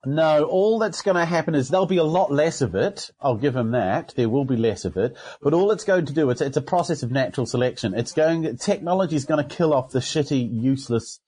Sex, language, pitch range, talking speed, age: male, English, 130-175 Hz, 255 wpm, 40-59